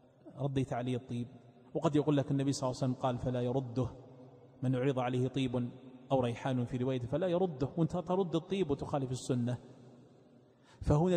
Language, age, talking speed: Arabic, 30-49, 160 wpm